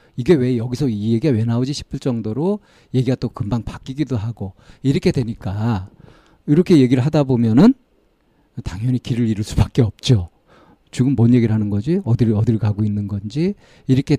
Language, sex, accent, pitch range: Korean, male, native, 110-140 Hz